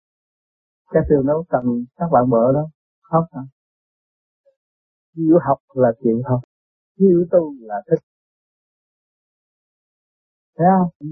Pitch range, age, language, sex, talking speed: 135-200 Hz, 50-69, Vietnamese, male, 110 wpm